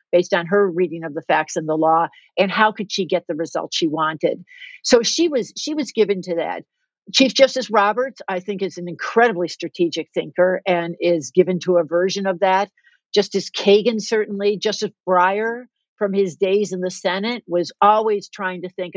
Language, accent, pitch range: English, American, 185-240 Hz